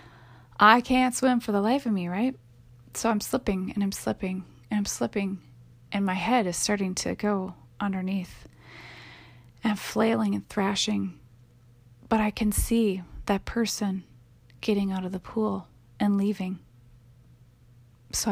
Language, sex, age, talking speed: English, female, 30-49, 145 wpm